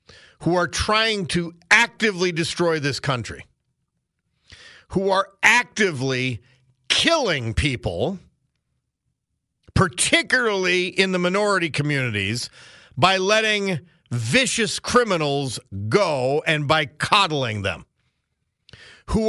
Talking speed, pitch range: 85 wpm, 155-230 Hz